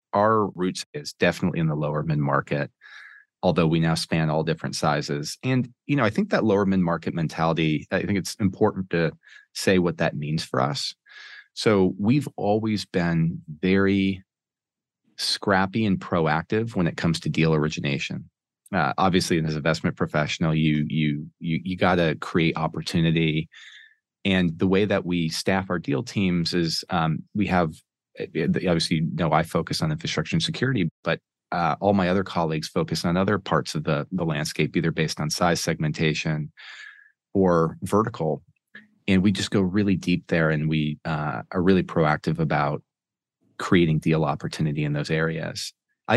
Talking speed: 165 wpm